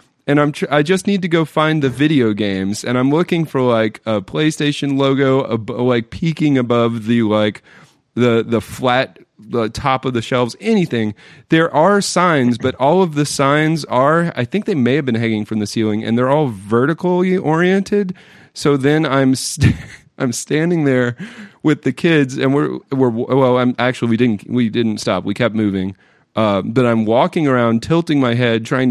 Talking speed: 190 wpm